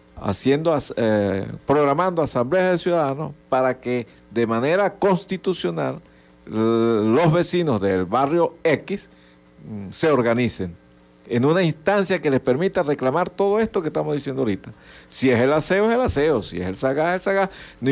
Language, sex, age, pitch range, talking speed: Spanish, male, 60-79, 110-160 Hz, 165 wpm